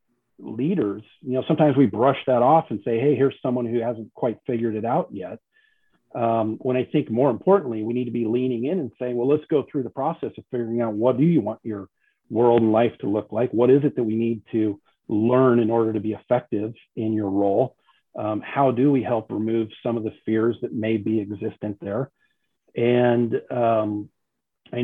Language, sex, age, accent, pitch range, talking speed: English, male, 40-59, American, 110-130 Hz, 215 wpm